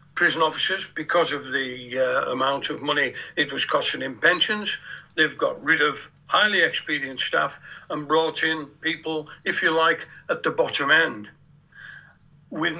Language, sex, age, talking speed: English, male, 60-79, 155 wpm